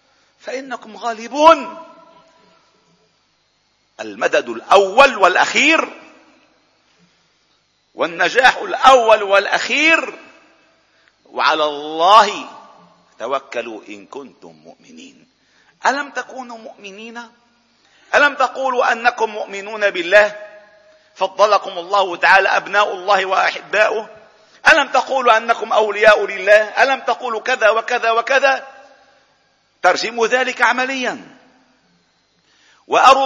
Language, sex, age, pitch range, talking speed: Arabic, male, 50-69, 205-270 Hz, 75 wpm